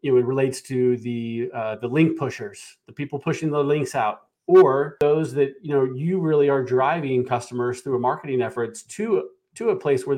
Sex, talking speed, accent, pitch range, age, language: male, 205 wpm, American, 125-155 Hz, 40-59, English